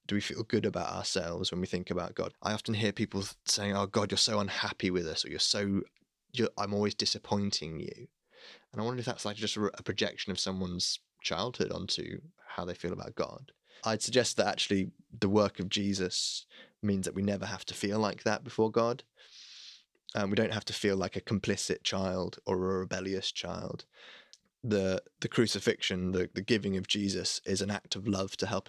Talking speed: 205 wpm